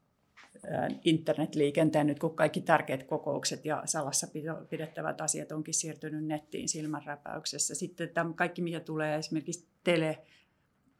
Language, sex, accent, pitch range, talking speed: Finnish, female, native, 150-165 Hz, 110 wpm